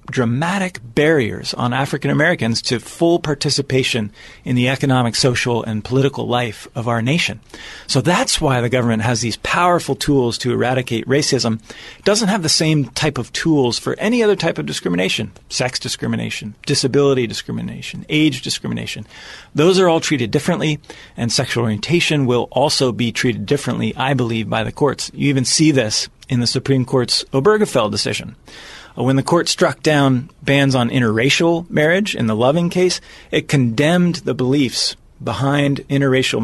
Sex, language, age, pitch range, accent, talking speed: male, English, 40-59, 120-150 Hz, American, 160 wpm